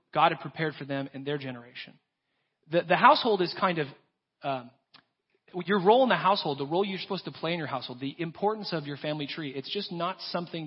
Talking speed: 220 wpm